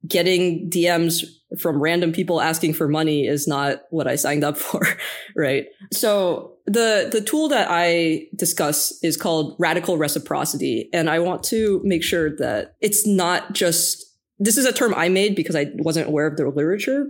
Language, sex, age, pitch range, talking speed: English, female, 20-39, 155-200 Hz, 175 wpm